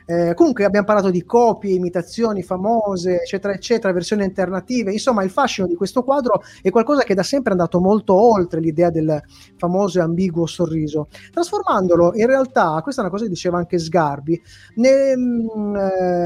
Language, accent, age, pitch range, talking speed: Italian, native, 30-49, 175-225 Hz, 165 wpm